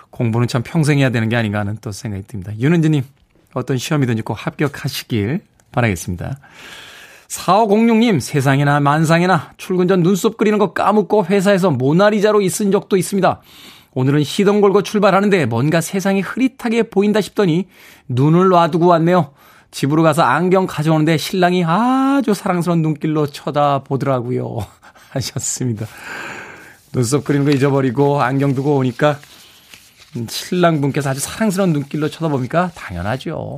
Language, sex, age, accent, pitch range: Korean, male, 20-39, native, 130-185 Hz